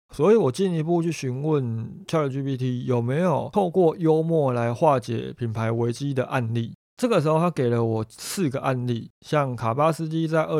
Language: Chinese